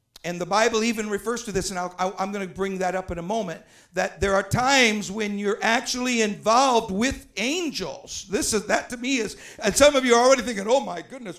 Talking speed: 230 wpm